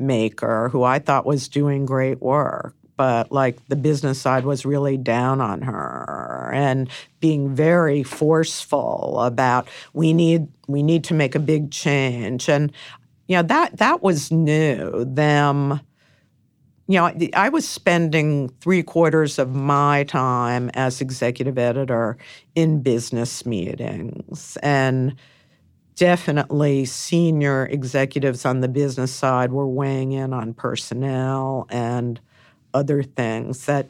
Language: English